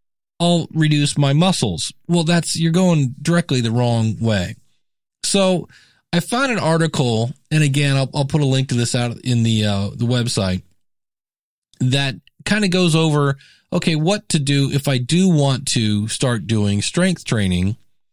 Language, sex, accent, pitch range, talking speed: English, male, American, 115-160 Hz, 160 wpm